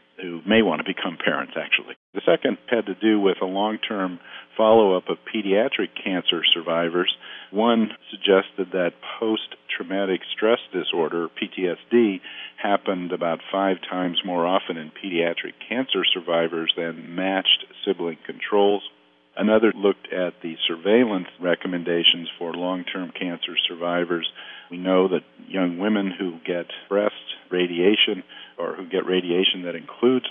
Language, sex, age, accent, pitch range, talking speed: English, male, 50-69, American, 85-95 Hz, 130 wpm